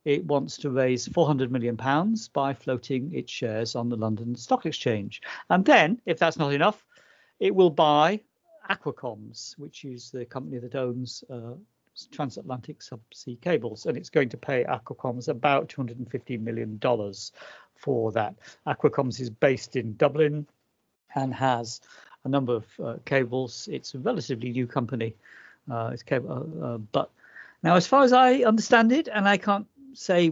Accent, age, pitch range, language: British, 60-79, 120-150 Hz, English